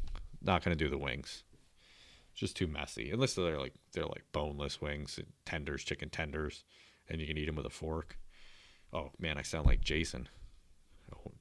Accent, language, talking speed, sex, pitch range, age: American, English, 190 wpm, male, 75-95 Hz, 30-49